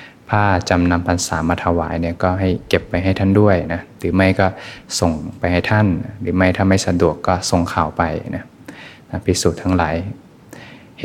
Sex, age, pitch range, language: male, 20-39, 85-95 Hz, Thai